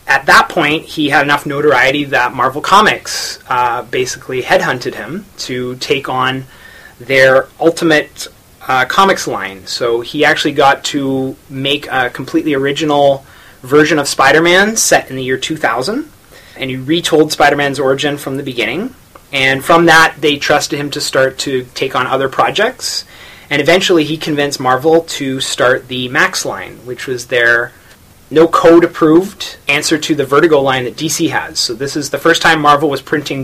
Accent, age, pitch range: American, 30-49, 130-155 Hz